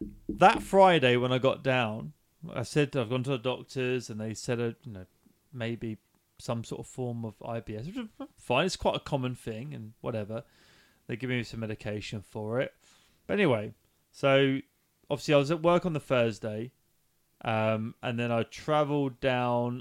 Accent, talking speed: British, 180 wpm